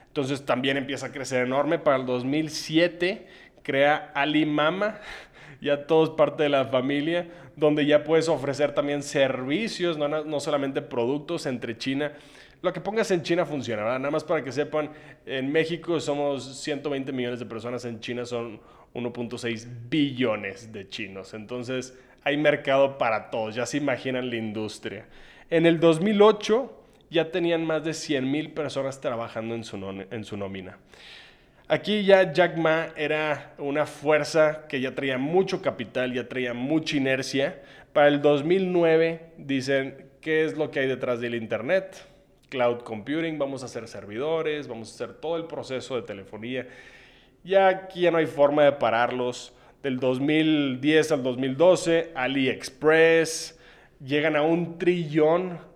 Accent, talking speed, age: Mexican, 150 wpm, 20-39